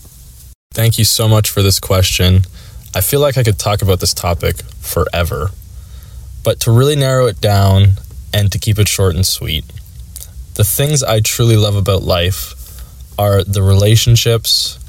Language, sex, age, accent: English, male, 20-39, American